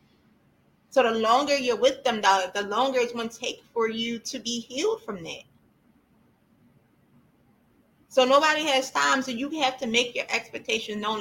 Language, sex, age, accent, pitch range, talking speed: English, female, 20-39, American, 215-270 Hz, 165 wpm